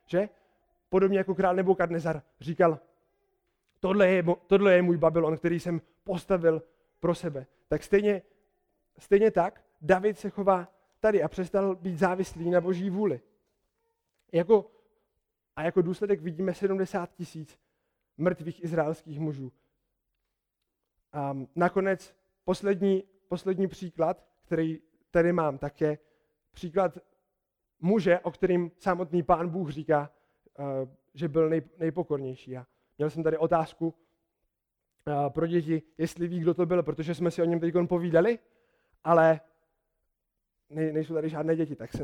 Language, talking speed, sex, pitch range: Czech, 120 wpm, male, 160-190 Hz